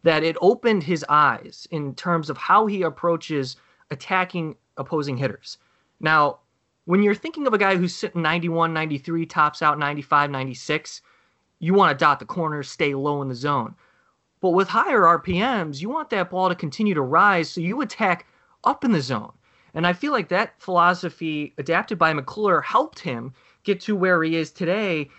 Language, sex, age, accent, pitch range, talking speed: English, male, 20-39, American, 140-185 Hz, 180 wpm